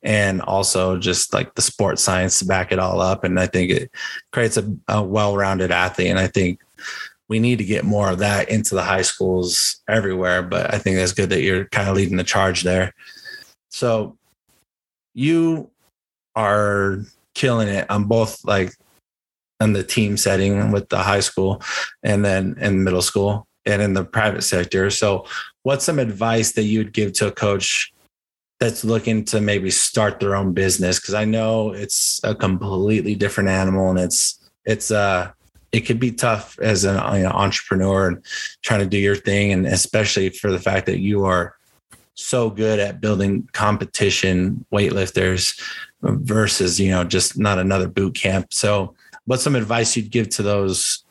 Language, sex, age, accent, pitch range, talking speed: English, male, 30-49, American, 95-110 Hz, 175 wpm